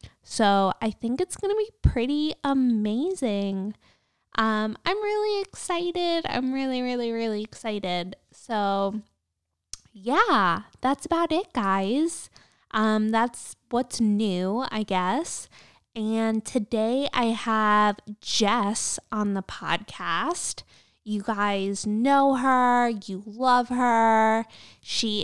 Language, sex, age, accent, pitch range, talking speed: English, female, 20-39, American, 205-245 Hz, 110 wpm